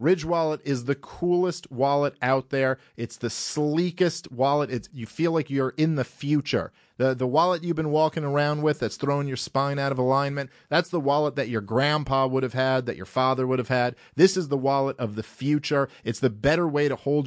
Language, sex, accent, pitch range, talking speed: English, male, American, 125-150 Hz, 220 wpm